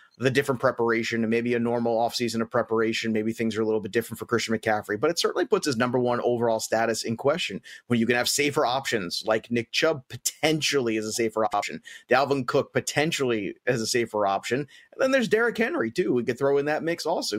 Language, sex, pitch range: English, male, 115-150 Hz